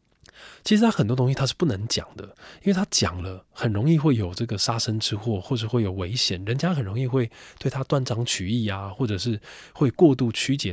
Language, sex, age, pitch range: Chinese, male, 20-39, 100-130 Hz